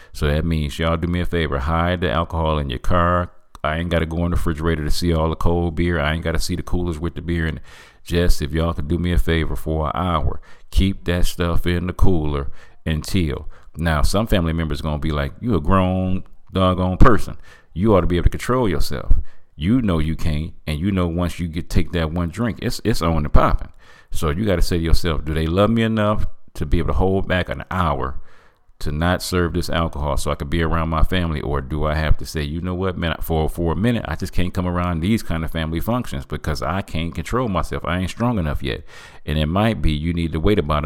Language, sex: English, male